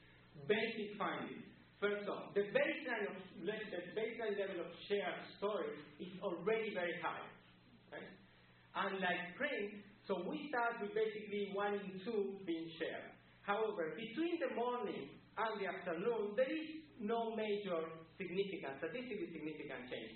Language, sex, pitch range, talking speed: English, male, 165-225 Hz, 140 wpm